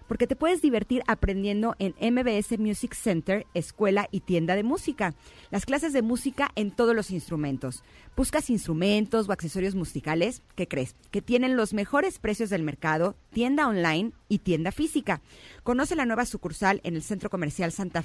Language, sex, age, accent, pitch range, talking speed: Spanish, female, 40-59, Mexican, 175-230 Hz, 165 wpm